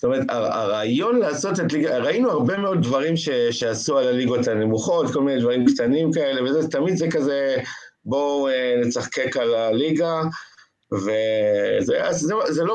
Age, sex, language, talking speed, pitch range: 50-69, male, Hebrew, 150 wpm, 110-160 Hz